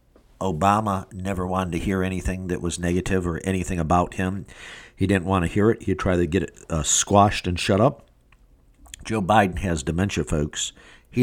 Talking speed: 185 wpm